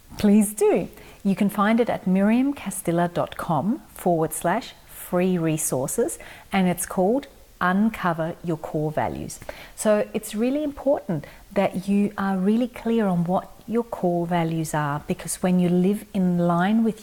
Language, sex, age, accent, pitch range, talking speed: English, female, 40-59, Australian, 170-210 Hz, 145 wpm